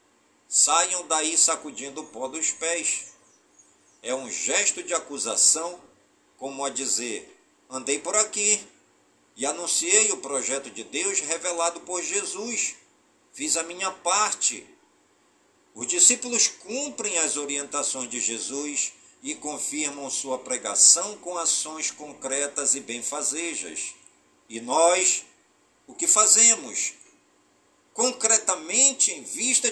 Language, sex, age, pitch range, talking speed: Portuguese, male, 50-69, 135-210 Hz, 110 wpm